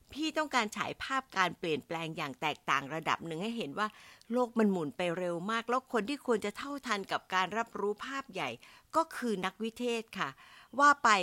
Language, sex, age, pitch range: Thai, female, 60-79, 165-240 Hz